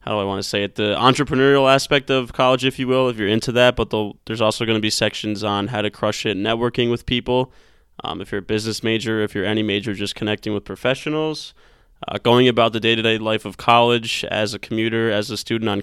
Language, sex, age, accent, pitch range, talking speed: English, male, 20-39, American, 105-125 Hz, 245 wpm